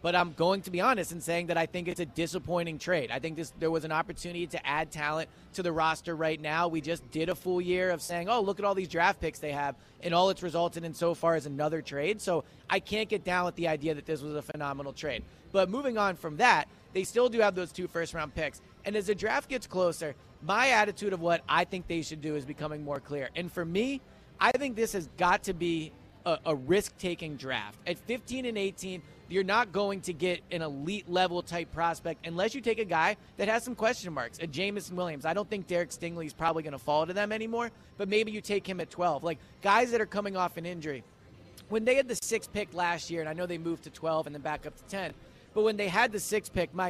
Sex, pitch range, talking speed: male, 160-200 Hz, 255 wpm